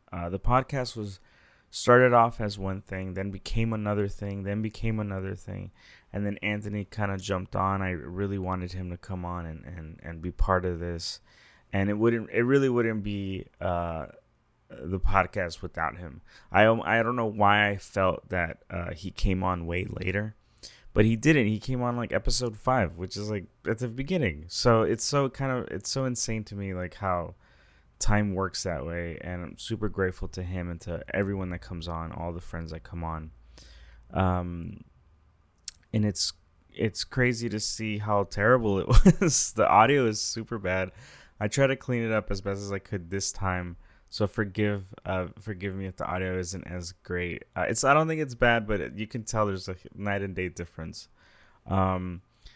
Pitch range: 90-110 Hz